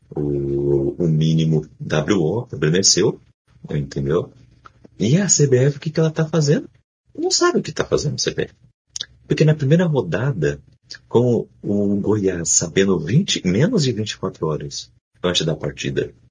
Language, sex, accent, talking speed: Portuguese, male, Brazilian, 140 wpm